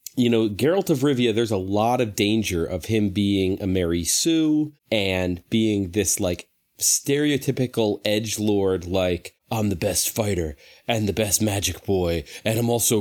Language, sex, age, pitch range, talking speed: English, male, 30-49, 100-130 Hz, 160 wpm